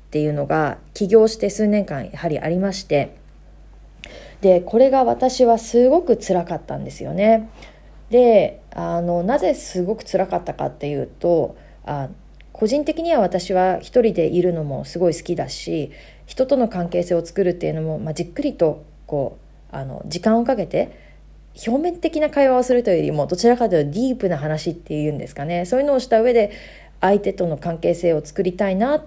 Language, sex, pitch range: Japanese, female, 165-225 Hz